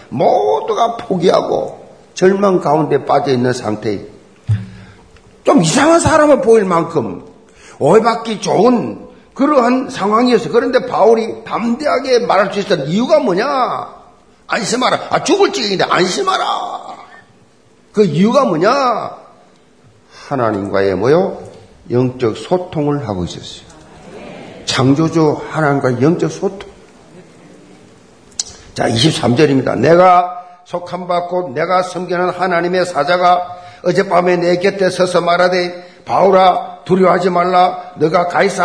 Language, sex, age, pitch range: Korean, male, 50-69, 165-195 Hz